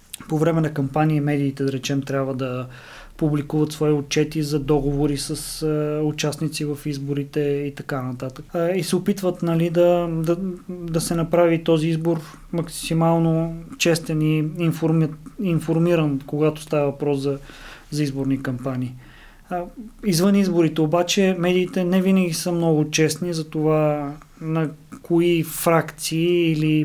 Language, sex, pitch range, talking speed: Bulgarian, male, 150-170 Hz, 130 wpm